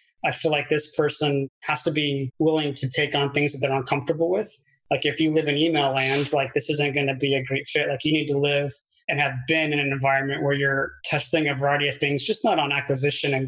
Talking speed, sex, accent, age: 250 wpm, male, American, 30-49